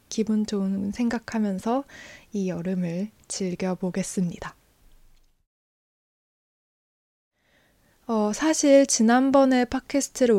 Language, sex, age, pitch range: Korean, female, 20-39, 195-245 Hz